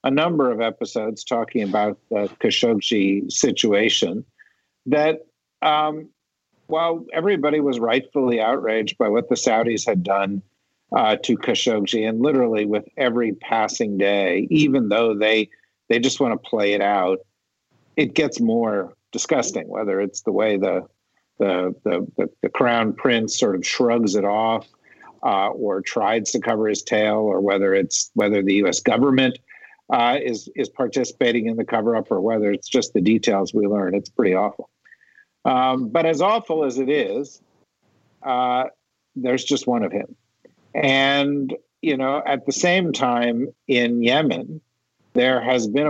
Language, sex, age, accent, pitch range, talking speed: English, male, 50-69, American, 105-130 Hz, 155 wpm